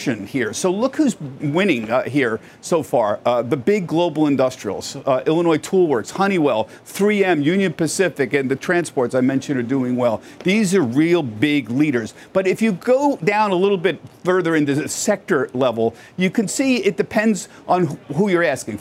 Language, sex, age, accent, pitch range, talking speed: English, male, 50-69, American, 140-200 Hz, 180 wpm